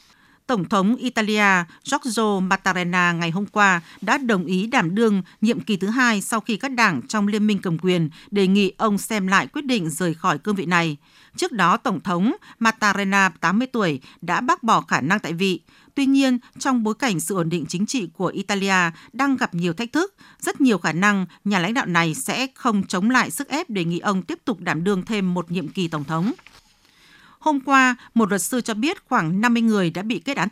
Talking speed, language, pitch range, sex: 215 wpm, Vietnamese, 185-240 Hz, female